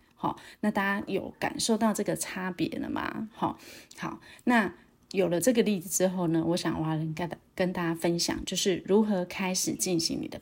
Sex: female